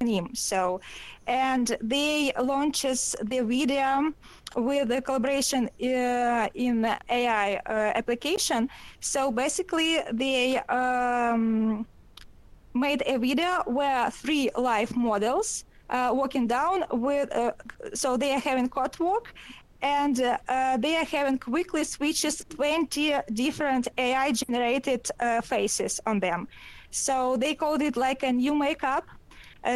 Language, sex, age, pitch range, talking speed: English, female, 20-39, 245-280 Hz, 120 wpm